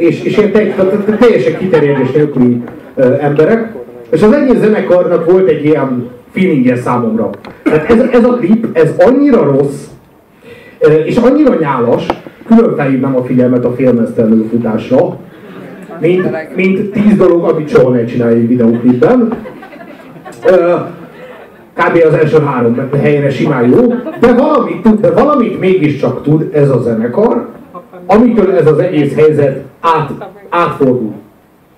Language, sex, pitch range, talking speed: Hungarian, male, 140-210 Hz, 135 wpm